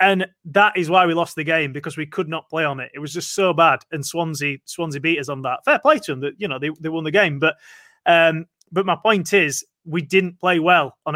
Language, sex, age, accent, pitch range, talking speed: English, male, 30-49, British, 150-190 Hz, 270 wpm